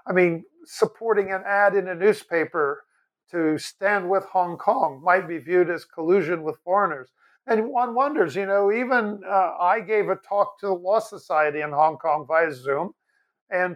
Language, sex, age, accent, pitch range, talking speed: English, male, 50-69, American, 175-225 Hz, 180 wpm